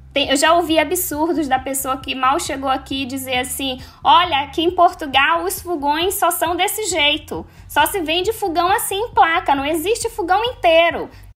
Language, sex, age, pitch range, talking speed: Portuguese, female, 10-29, 255-340 Hz, 175 wpm